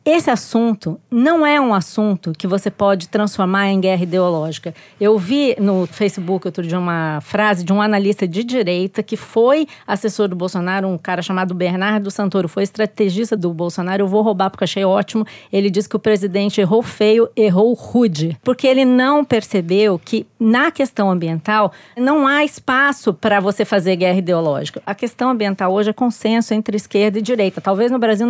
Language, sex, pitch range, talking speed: Portuguese, female, 195-245 Hz, 180 wpm